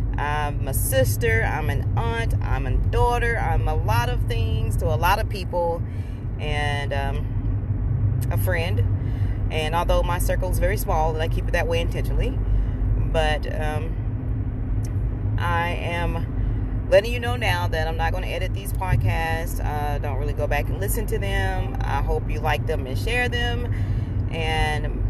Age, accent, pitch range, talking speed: 30-49, American, 100-115 Hz, 165 wpm